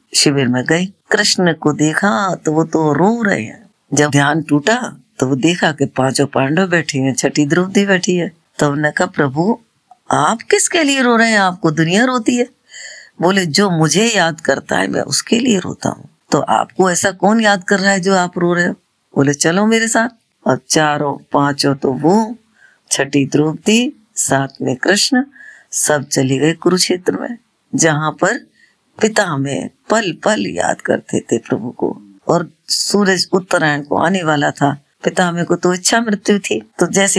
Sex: female